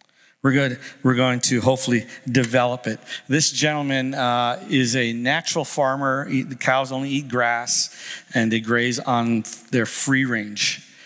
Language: English